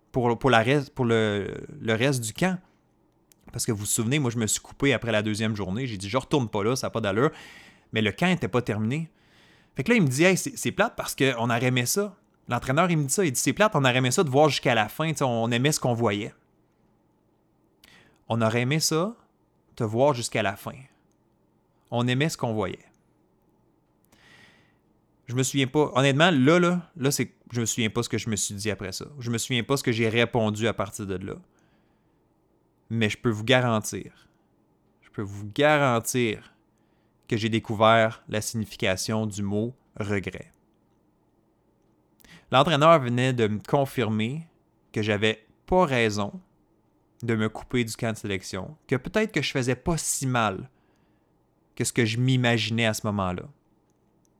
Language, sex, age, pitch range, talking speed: French, male, 30-49, 110-140 Hz, 195 wpm